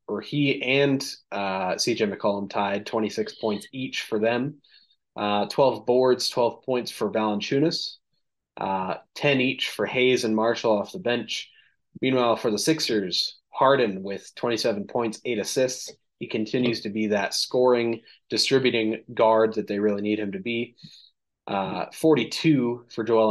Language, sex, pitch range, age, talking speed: English, male, 105-125 Hz, 20-39, 150 wpm